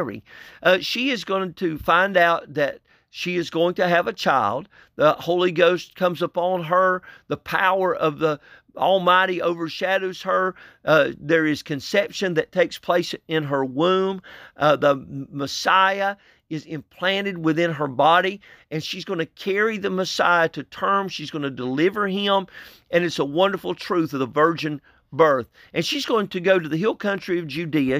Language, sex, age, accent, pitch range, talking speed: English, male, 50-69, American, 160-195 Hz, 175 wpm